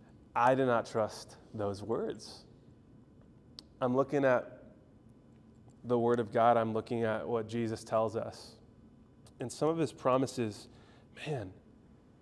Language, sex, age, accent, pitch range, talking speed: English, male, 20-39, American, 110-125 Hz, 130 wpm